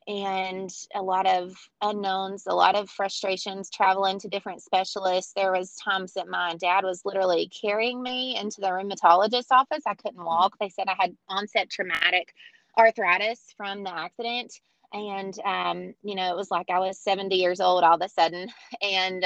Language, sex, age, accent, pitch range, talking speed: English, female, 20-39, American, 185-225 Hz, 180 wpm